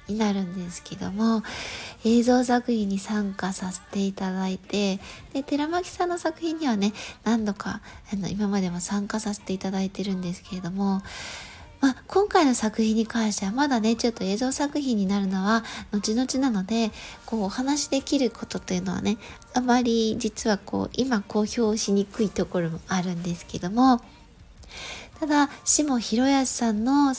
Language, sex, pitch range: Japanese, female, 200-260 Hz